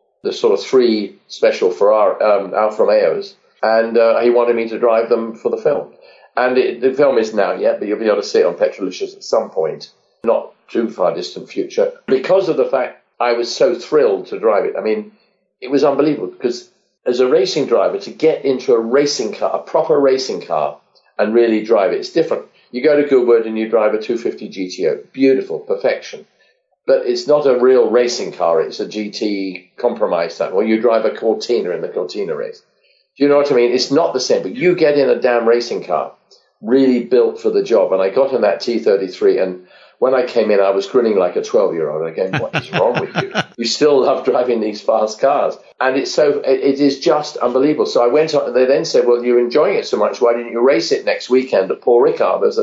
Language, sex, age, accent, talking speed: English, male, 40-59, British, 225 wpm